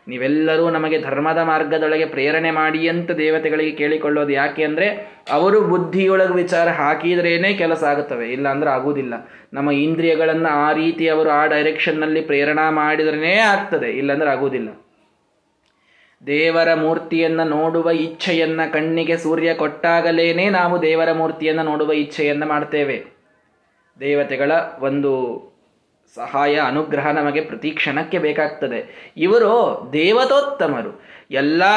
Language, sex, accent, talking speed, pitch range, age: Kannada, male, native, 100 wpm, 155-205 Hz, 20-39